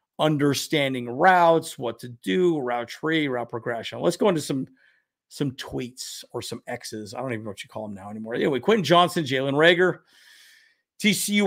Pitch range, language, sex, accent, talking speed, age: 130-195 Hz, English, male, American, 180 wpm, 40-59